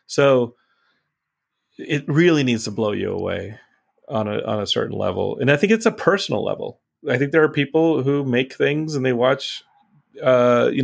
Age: 30-49